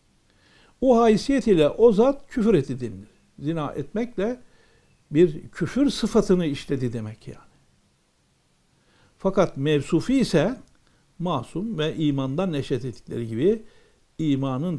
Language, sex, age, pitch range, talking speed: Turkish, male, 60-79, 130-190 Hz, 105 wpm